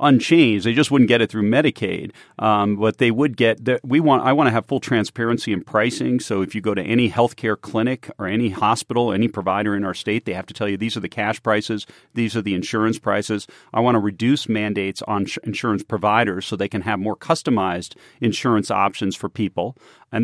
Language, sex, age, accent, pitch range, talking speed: English, male, 40-59, American, 100-120 Hz, 220 wpm